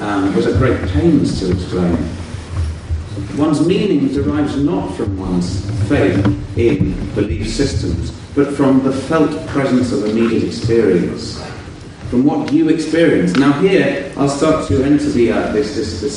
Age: 40-59